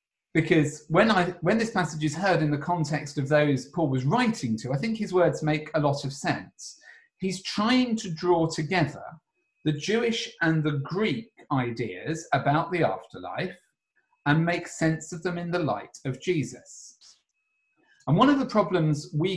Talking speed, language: 175 wpm, English